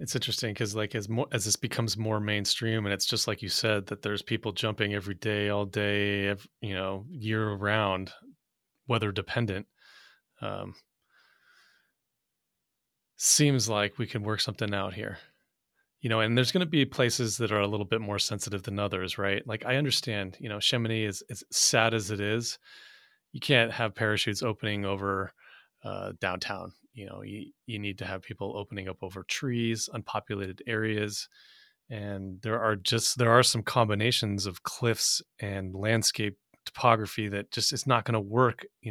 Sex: male